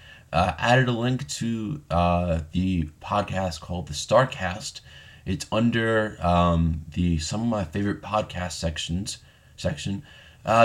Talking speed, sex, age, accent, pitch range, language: 130 wpm, male, 20-39, American, 90-115 Hz, English